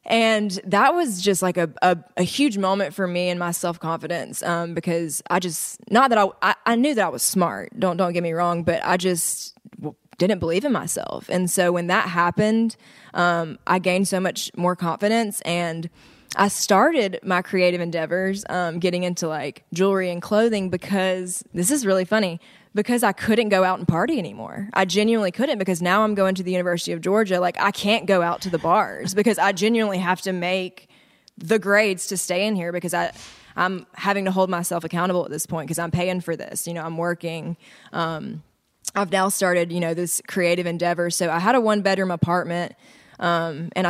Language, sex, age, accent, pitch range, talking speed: English, female, 20-39, American, 175-200 Hz, 200 wpm